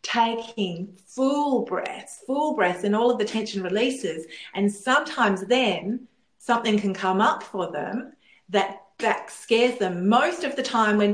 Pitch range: 185-235 Hz